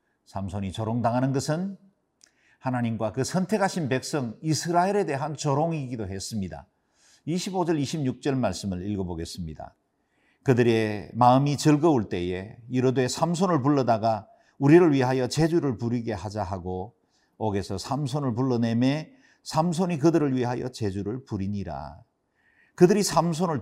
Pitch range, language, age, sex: 105-145 Hz, Korean, 50-69, male